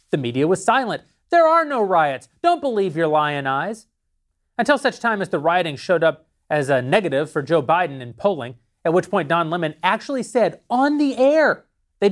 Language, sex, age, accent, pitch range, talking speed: English, male, 30-49, American, 155-225 Hz, 200 wpm